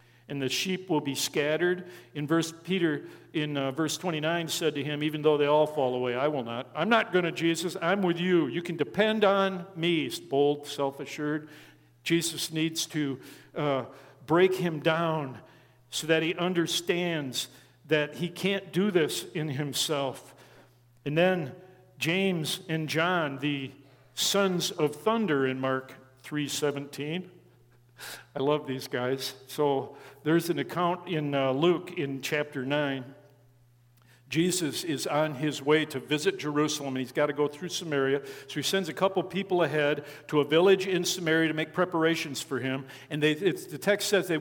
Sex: male